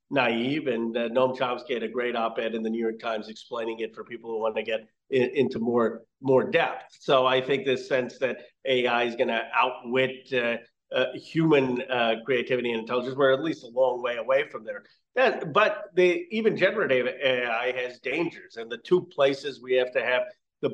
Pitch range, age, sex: 125-145 Hz, 40-59, male